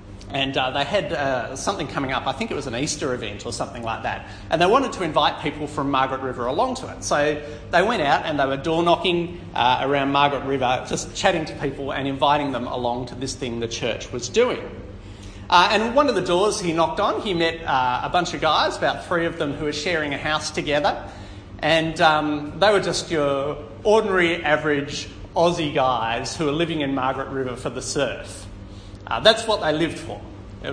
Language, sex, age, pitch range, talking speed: English, male, 40-59, 100-160 Hz, 215 wpm